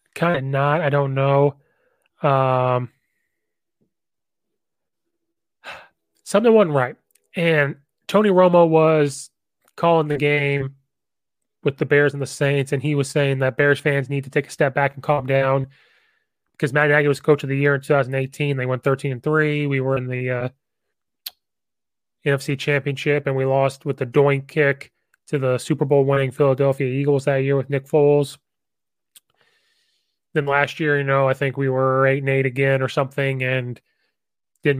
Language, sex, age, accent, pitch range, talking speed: English, male, 20-39, American, 135-155 Hz, 160 wpm